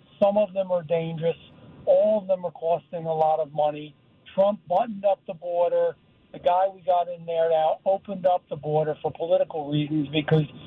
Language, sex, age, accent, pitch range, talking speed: English, male, 50-69, American, 165-200 Hz, 190 wpm